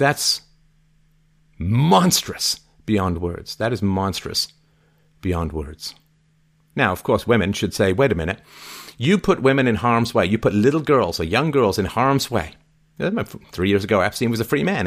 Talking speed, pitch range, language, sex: 170 wpm, 95-155 Hz, English, male